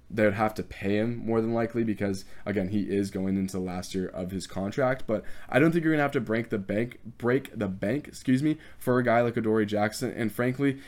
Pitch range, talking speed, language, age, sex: 100-120 Hz, 245 wpm, English, 20-39, male